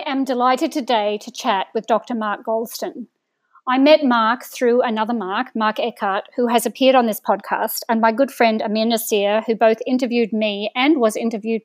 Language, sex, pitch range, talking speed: English, female, 220-265 Hz, 190 wpm